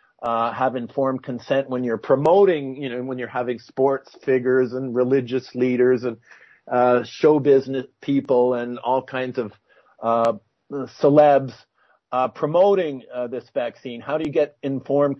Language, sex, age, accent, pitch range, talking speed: English, male, 50-69, American, 125-155 Hz, 150 wpm